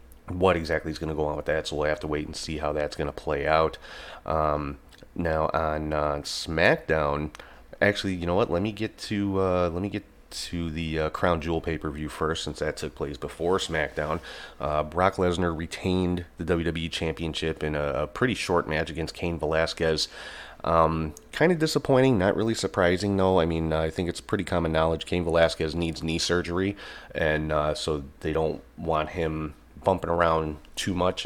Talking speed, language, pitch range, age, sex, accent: 195 wpm, English, 80-90 Hz, 30-49, male, American